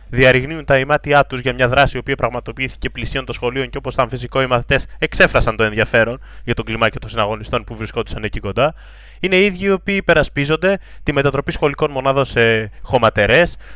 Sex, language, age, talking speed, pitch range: male, Greek, 20-39, 190 wpm, 120-160 Hz